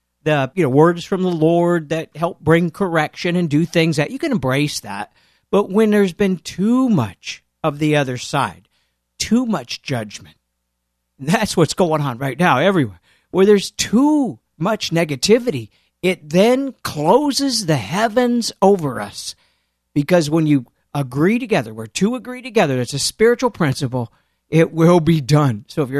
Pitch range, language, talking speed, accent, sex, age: 125-190 Hz, English, 175 wpm, American, male, 50-69